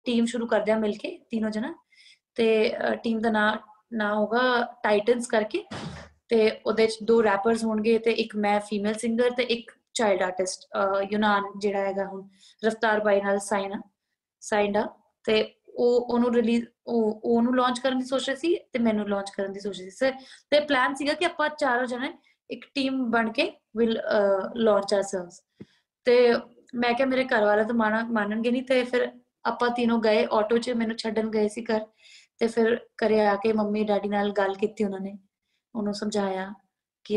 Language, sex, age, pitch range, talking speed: Punjabi, female, 20-39, 205-245 Hz, 175 wpm